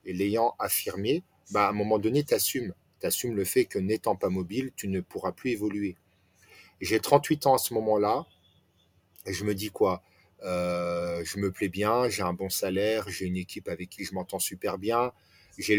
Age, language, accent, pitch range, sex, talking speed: 40-59, French, French, 95-120 Hz, male, 195 wpm